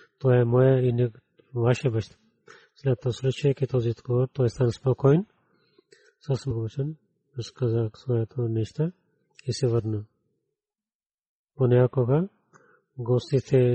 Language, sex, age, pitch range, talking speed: Bulgarian, male, 30-49, 120-145 Hz, 125 wpm